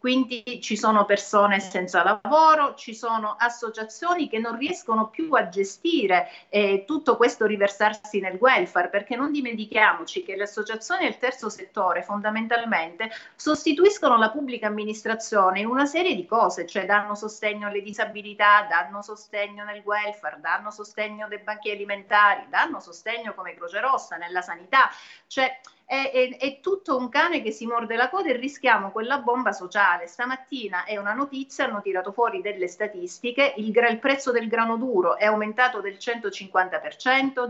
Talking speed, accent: 160 wpm, native